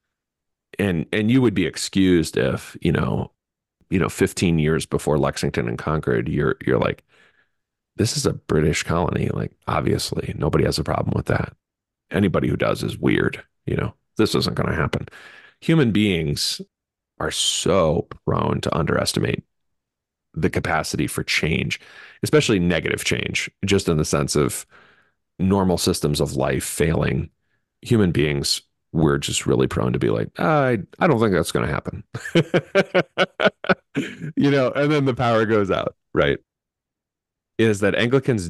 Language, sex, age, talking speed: English, male, 40-59, 155 wpm